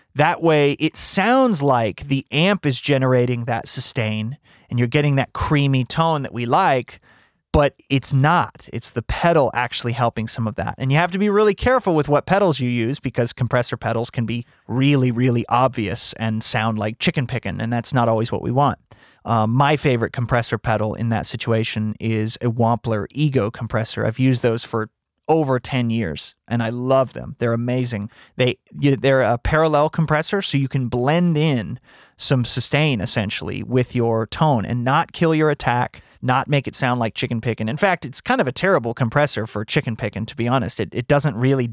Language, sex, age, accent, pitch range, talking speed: English, male, 30-49, American, 115-140 Hz, 195 wpm